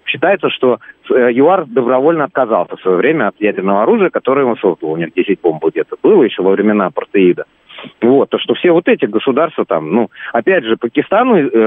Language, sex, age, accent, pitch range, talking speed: Russian, male, 30-49, native, 110-145 Hz, 185 wpm